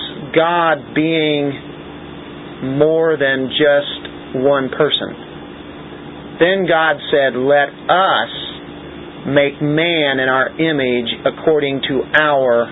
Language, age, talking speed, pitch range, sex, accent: English, 40-59, 95 wpm, 125-155 Hz, male, American